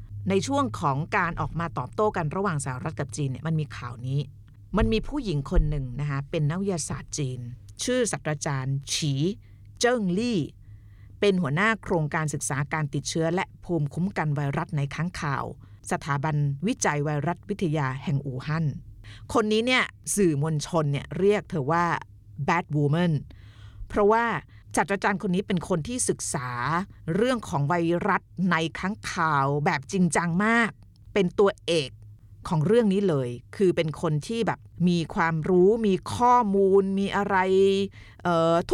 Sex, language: female, Thai